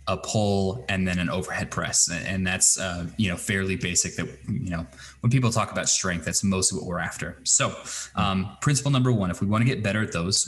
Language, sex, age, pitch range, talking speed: English, male, 20-39, 90-110 Hz, 225 wpm